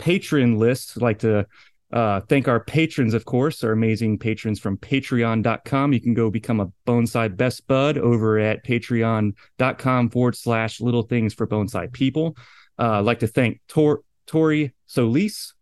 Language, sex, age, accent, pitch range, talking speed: English, male, 30-49, American, 110-135 Hz, 160 wpm